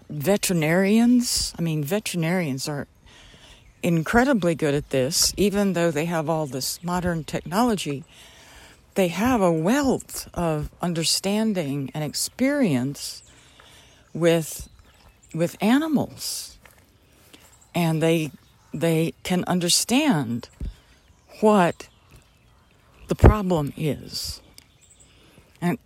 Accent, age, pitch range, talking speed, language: American, 60-79, 140-190 Hz, 90 wpm, English